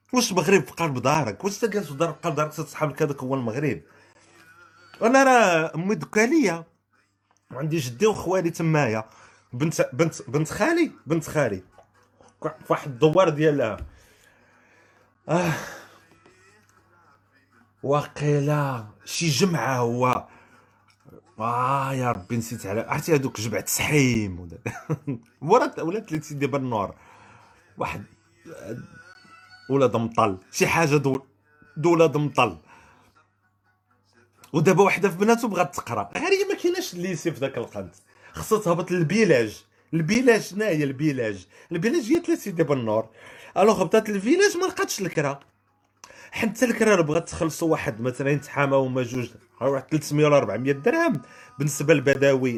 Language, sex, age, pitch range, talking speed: Arabic, male, 40-59, 125-185 Hz, 125 wpm